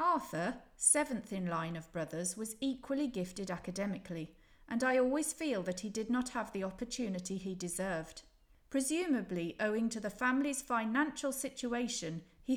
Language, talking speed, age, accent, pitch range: English, 150 wpm, 40-59, British, 185-245 Hz